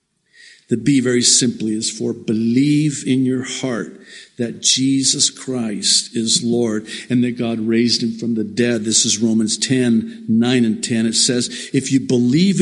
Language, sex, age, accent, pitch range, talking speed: English, male, 50-69, American, 110-165 Hz, 165 wpm